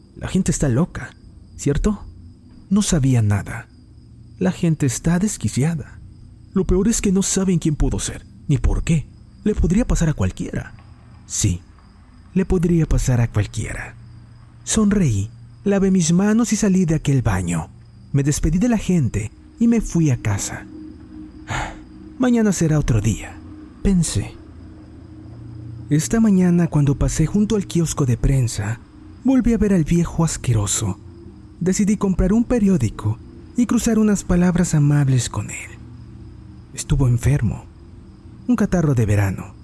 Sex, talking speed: male, 140 wpm